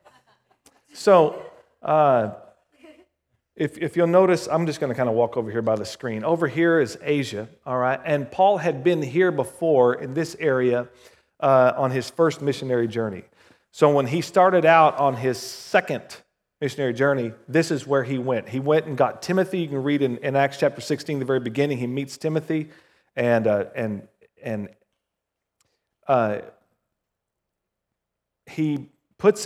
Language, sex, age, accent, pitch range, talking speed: English, male, 40-59, American, 120-155 Hz, 165 wpm